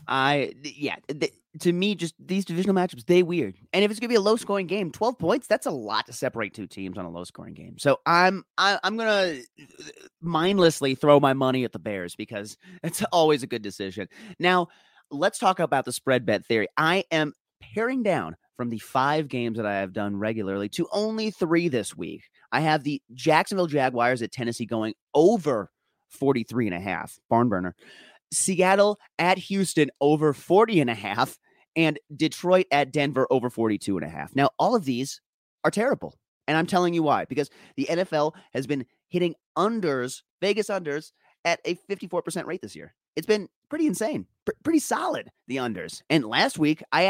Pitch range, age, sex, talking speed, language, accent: 125-185 Hz, 30-49, male, 190 wpm, English, American